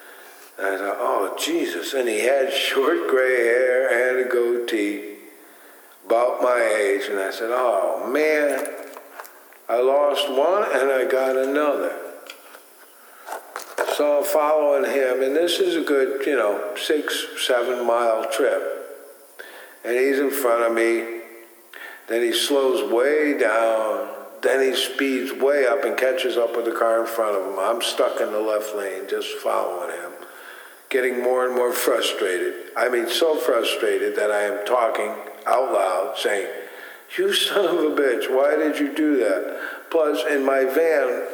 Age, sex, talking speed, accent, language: 60-79, male, 155 wpm, American, English